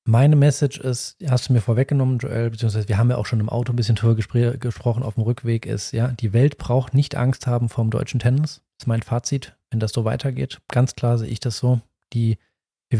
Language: German